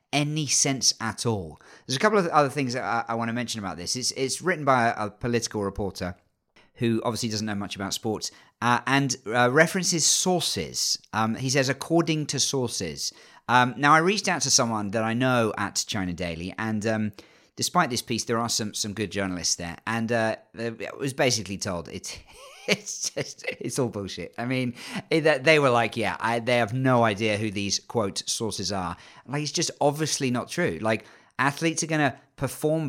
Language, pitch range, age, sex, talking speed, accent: English, 110-145 Hz, 40-59, male, 195 wpm, British